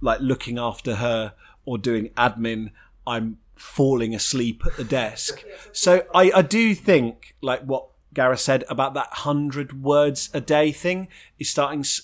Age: 30-49